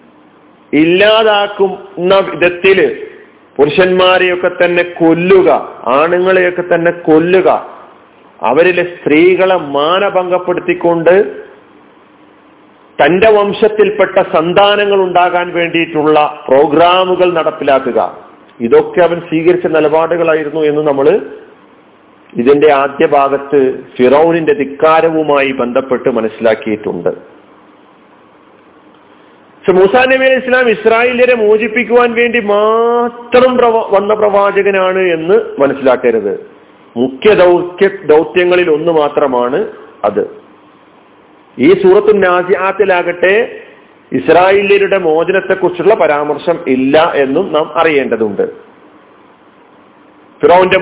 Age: 40-59